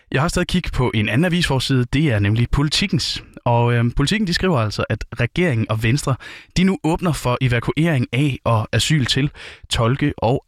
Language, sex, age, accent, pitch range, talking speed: Danish, male, 20-39, native, 110-140 Hz, 190 wpm